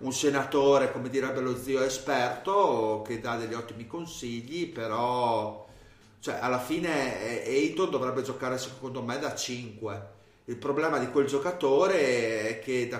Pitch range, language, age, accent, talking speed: 115-135 Hz, Italian, 30-49, native, 145 wpm